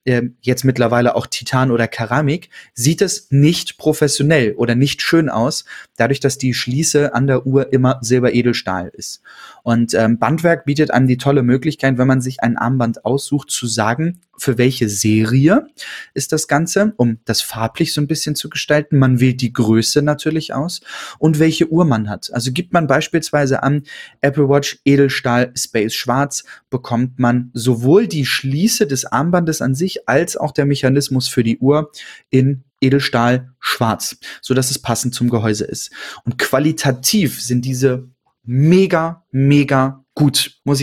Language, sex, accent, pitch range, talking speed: German, male, German, 120-150 Hz, 155 wpm